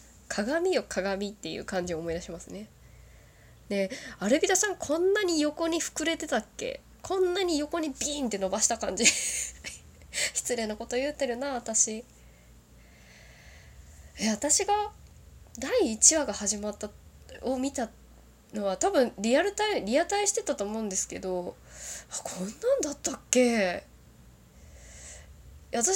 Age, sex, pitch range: 20-39, female, 160-270 Hz